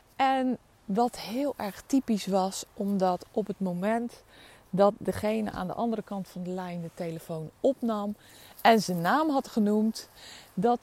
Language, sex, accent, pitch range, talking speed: Dutch, female, Dutch, 175-250 Hz, 155 wpm